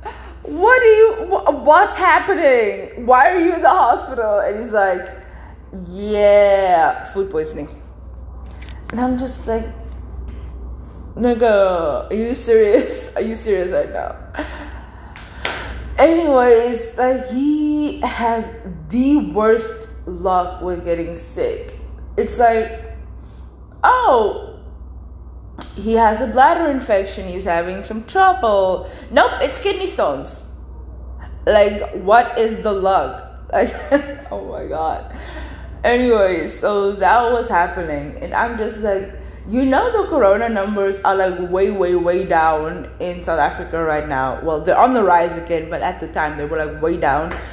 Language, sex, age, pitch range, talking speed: English, female, 20-39, 165-255 Hz, 135 wpm